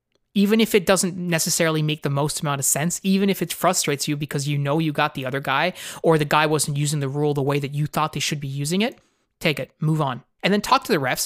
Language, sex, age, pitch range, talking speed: English, male, 20-39, 145-180 Hz, 270 wpm